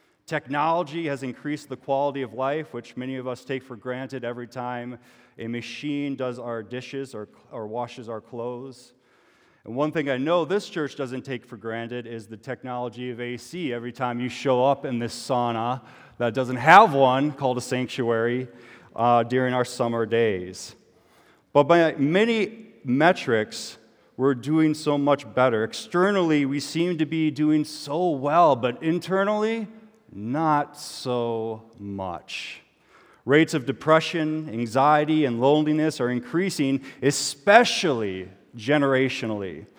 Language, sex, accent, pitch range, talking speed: English, male, American, 120-150 Hz, 140 wpm